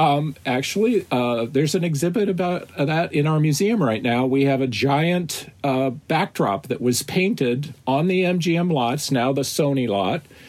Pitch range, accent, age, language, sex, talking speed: 130-165 Hz, American, 40-59, English, male, 175 wpm